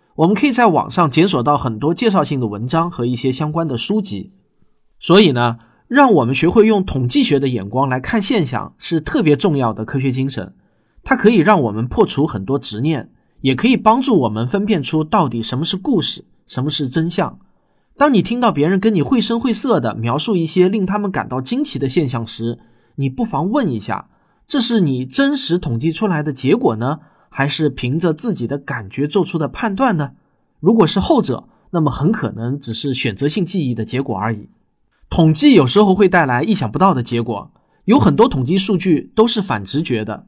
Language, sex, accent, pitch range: Chinese, male, native, 125-195 Hz